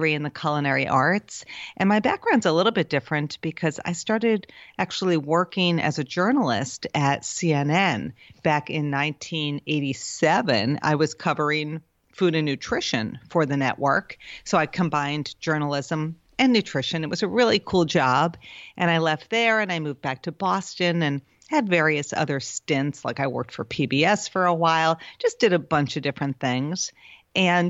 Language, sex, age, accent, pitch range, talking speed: English, female, 40-59, American, 150-190 Hz, 165 wpm